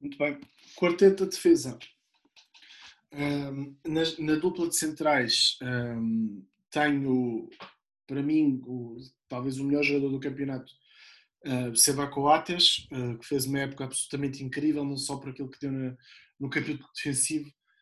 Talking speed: 120 wpm